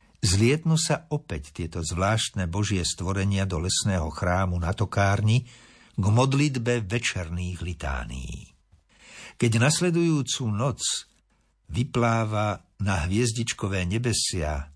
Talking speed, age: 95 wpm, 60-79